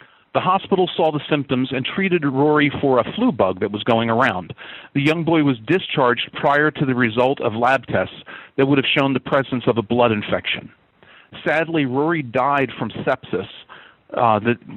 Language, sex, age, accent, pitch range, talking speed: English, male, 40-59, American, 125-155 Hz, 185 wpm